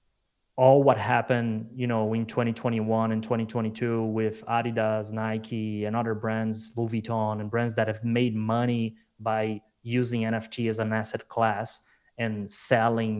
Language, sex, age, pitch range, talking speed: English, male, 20-39, 110-120 Hz, 145 wpm